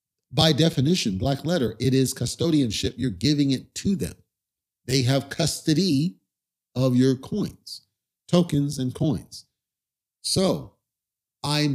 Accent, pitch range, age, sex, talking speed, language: American, 125-150 Hz, 50-69, male, 115 wpm, English